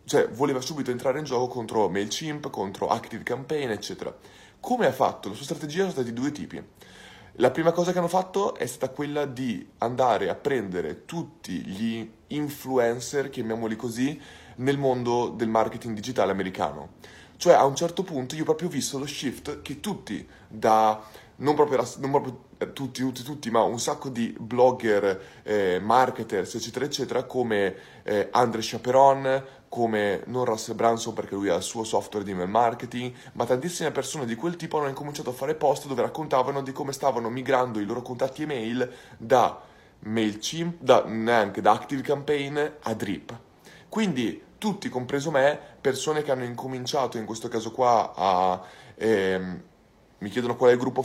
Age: 20-39